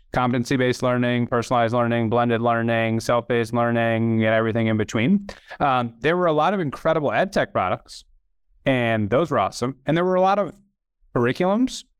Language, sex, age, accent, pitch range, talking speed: English, male, 30-49, American, 110-140 Hz, 165 wpm